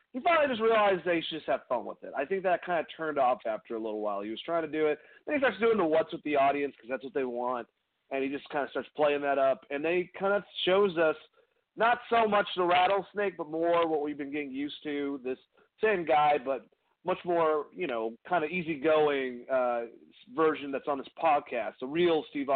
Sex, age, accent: male, 30-49, American